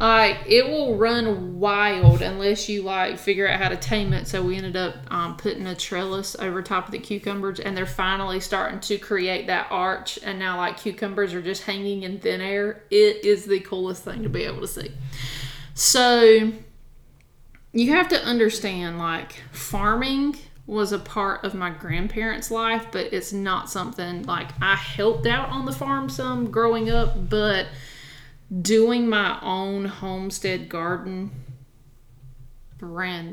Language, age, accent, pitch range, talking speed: English, 30-49, American, 165-210 Hz, 160 wpm